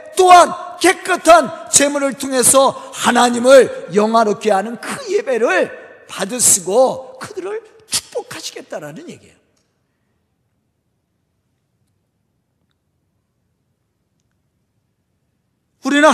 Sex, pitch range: male, 235-340 Hz